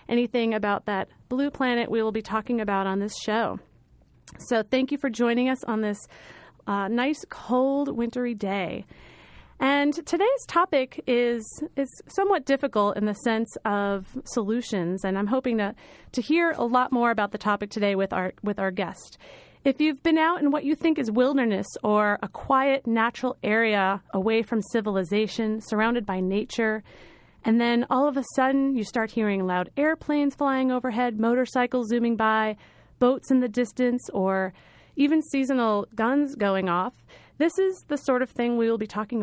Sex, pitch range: female, 210-260 Hz